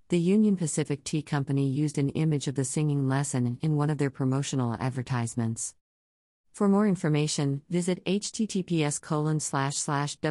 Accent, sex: American, female